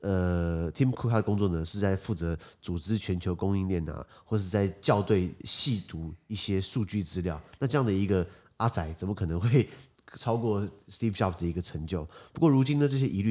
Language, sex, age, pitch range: Chinese, male, 30-49, 85-115 Hz